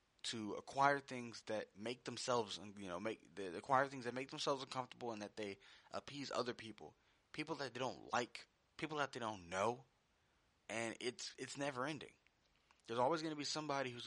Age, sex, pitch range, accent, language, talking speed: 20-39, male, 105-135 Hz, American, English, 190 wpm